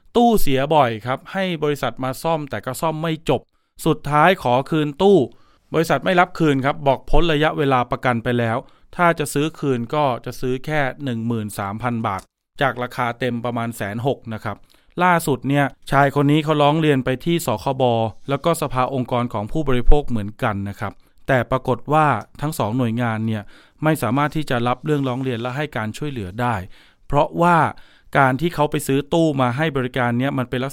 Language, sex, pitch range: Thai, male, 120-150 Hz